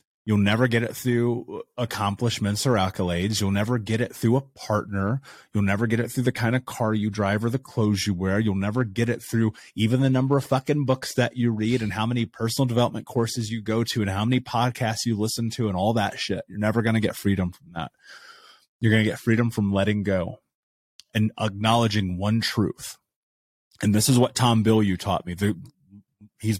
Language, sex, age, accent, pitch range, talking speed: English, male, 30-49, American, 100-115 Hz, 210 wpm